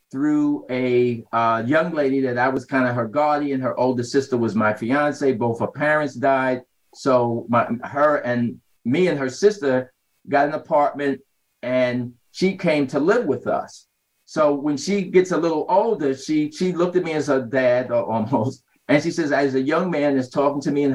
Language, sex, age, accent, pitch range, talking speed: English, male, 50-69, American, 125-160 Hz, 190 wpm